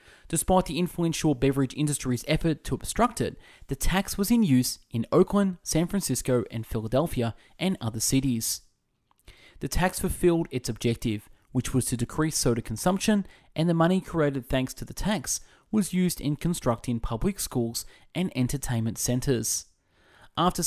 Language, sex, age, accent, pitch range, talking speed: English, male, 20-39, Australian, 115-160 Hz, 150 wpm